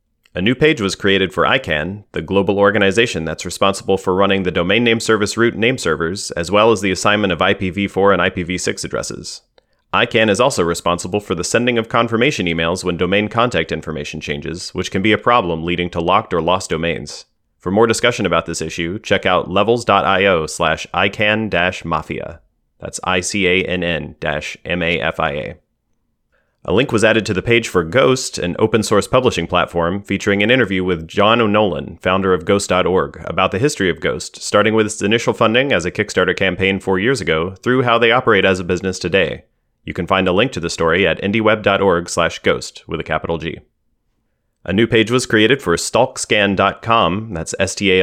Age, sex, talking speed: 30-49, male, 195 wpm